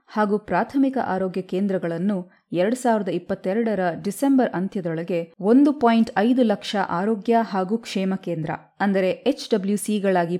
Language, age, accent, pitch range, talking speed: Kannada, 20-39, native, 180-230 Hz, 115 wpm